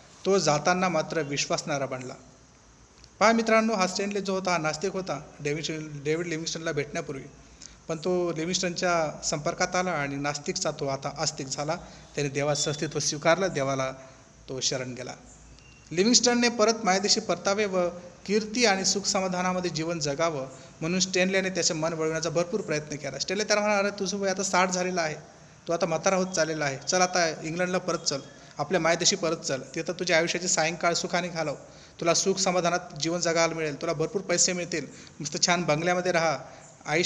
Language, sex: Hindi, male